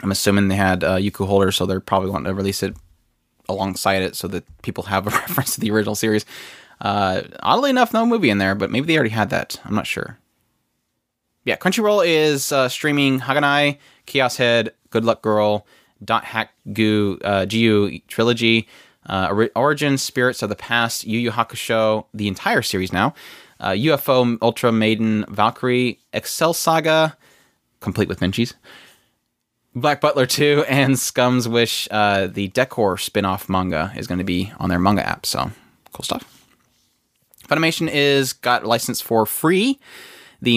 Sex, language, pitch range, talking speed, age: male, English, 95-125 Hz, 160 wpm, 20-39